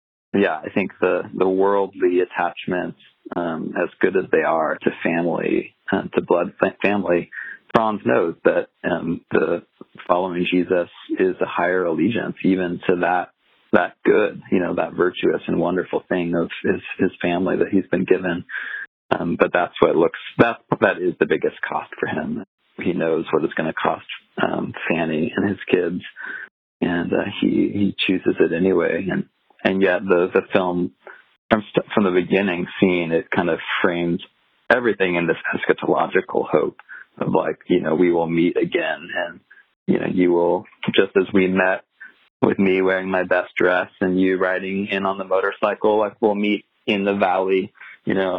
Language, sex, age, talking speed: English, male, 40-59, 175 wpm